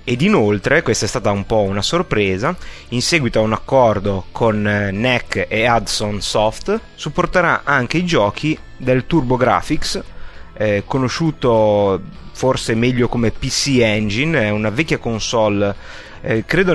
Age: 30-49